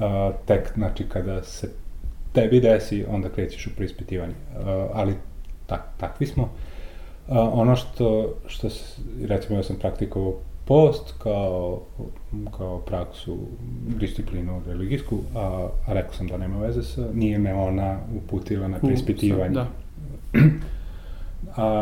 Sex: male